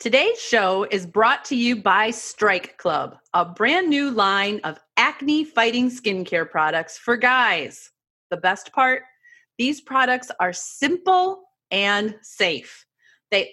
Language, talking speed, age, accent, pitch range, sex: English, 135 wpm, 30-49, American, 185-265 Hz, female